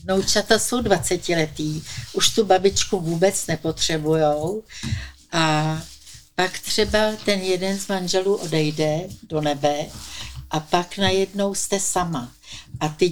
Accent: native